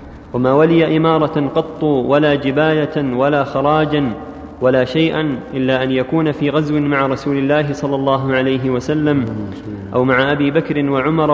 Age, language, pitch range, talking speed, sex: 30-49, Arabic, 140-160 Hz, 145 wpm, male